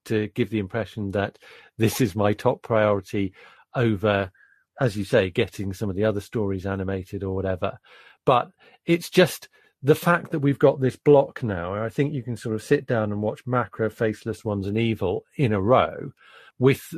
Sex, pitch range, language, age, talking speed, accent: male, 100-130 Hz, English, 40-59, 185 wpm, British